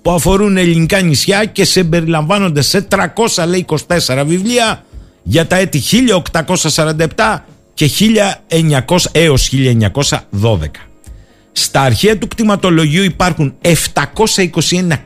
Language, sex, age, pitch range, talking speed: Greek, male, 50-69, 130-190 Hz, 90 wpm